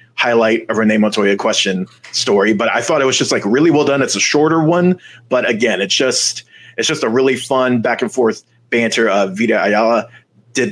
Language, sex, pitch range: English, male, 115-150 Hz